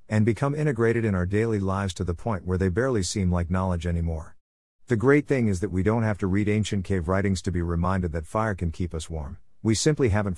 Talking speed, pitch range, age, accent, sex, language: 245 wpm, 90-110 Hz, 50-69, American, male, English